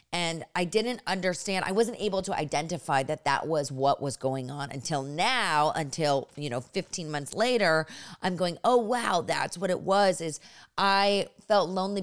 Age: 30-49